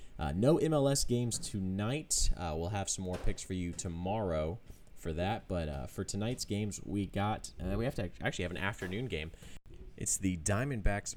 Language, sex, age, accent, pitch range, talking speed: English, male, 30-49, American, 85-105 Hz, 190 wpm